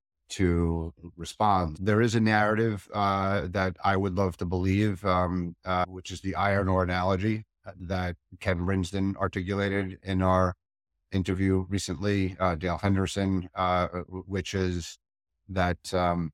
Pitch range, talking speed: 85-95 Hz, 130 wpm